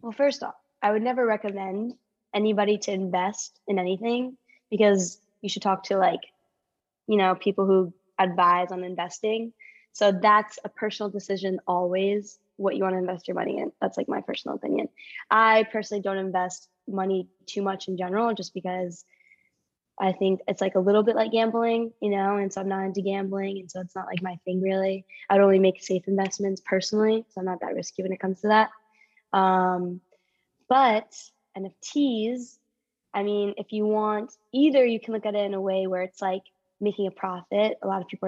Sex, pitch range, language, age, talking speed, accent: female, 185-215 Hz, English, 10-29, 195 wpm, American